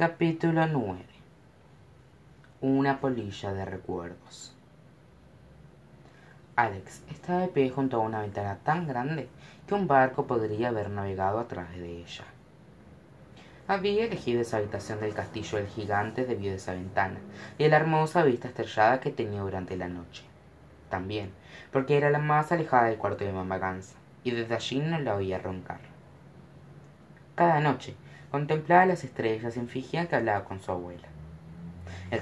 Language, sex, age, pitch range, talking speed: Spanish, female, 20-39, 100-135 Hz, 150 wpm